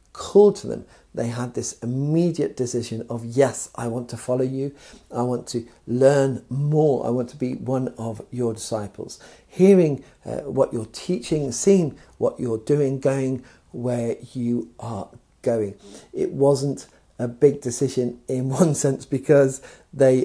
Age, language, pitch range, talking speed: 50-69, English, 120-155 Hz, 155 wpm